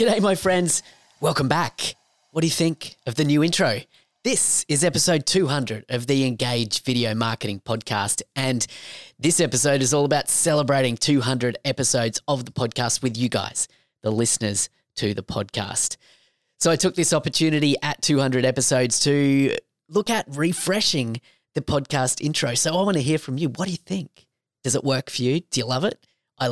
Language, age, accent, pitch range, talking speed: English, 30-49, Australian, 120-155 Hz, 180 wpm